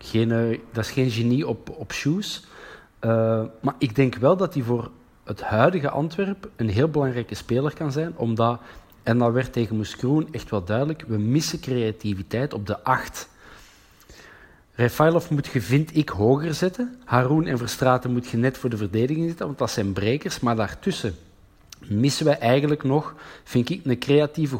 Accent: Dutch